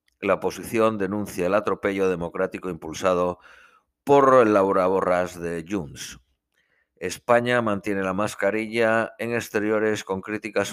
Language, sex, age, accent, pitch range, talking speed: Spanish, male, 50-69, Spanish, 90-110 Hz, 110 wpm